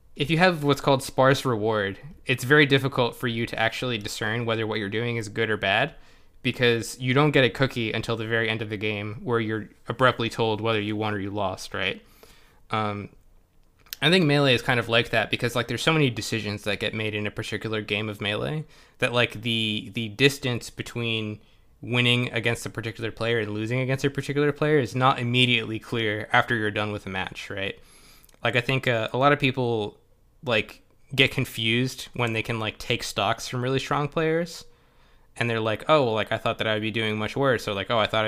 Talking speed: 220 wpm